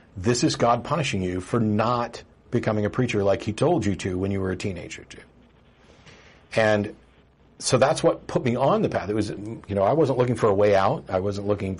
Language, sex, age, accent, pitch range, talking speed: English, male, 50-69, American, 100-135 Hz, 225 wpm